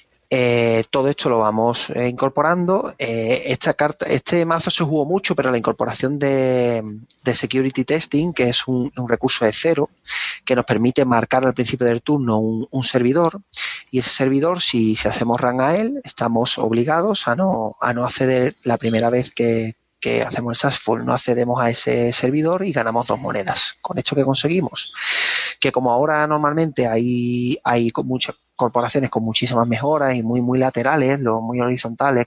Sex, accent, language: male, Spanish, Spanish